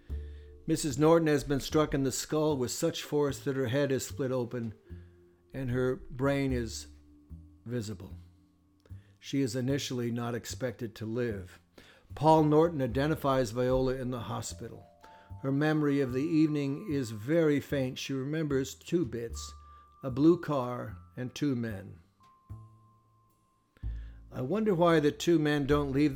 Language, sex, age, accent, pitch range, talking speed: English, male, 60-79, American, 100-145 Hz, 140 wpm